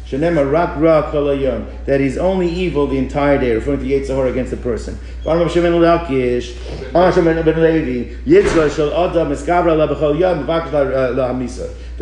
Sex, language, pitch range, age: male, English, 135-170 Hz, 50-69